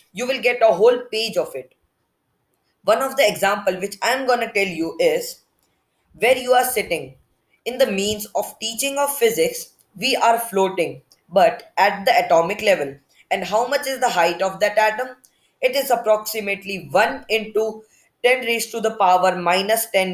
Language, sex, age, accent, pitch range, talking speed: English, female, 20-39, Indian, 185-245 Hz, 175 wpm